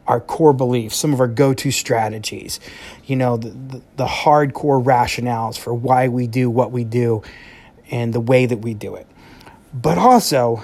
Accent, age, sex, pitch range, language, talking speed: American, 30-49, male, 120-135 Hz, English, 175 wpm